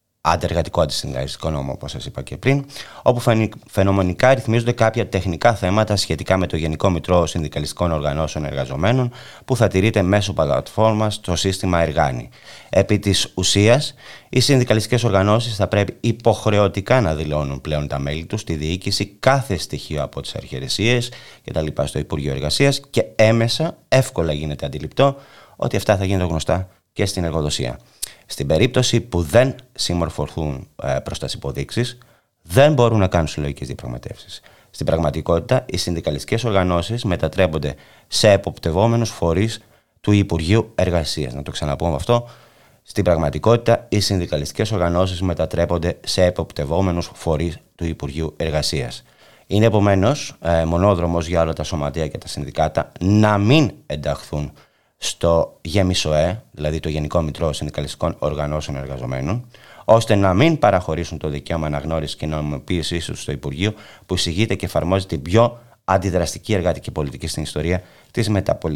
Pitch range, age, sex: 80-110 Hz, 30-49, male